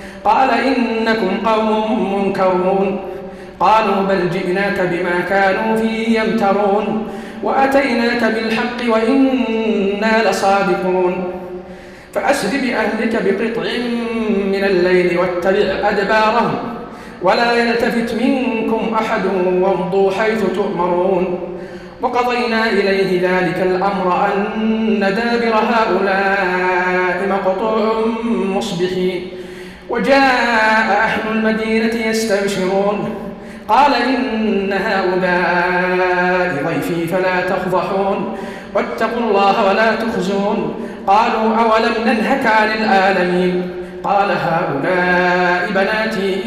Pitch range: 185-225 Hz